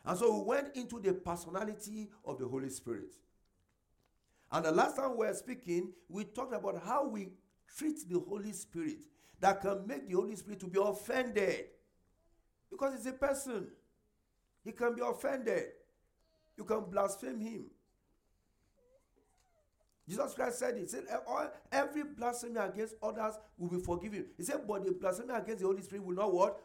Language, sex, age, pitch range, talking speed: English, male, 50-69, 180-255 Hz, 165 wpm